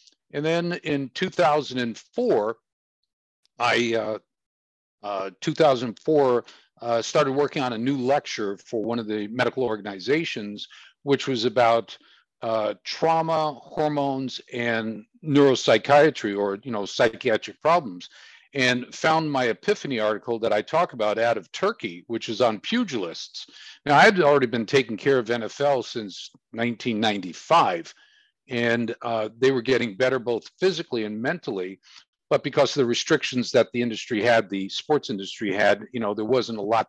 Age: 50-69